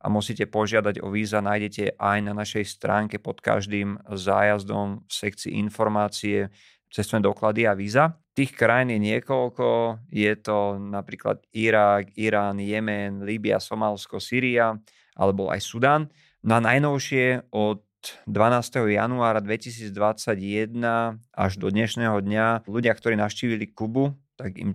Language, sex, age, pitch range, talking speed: Slovak, male, 30-49, 100-115 Hz, 130 wpm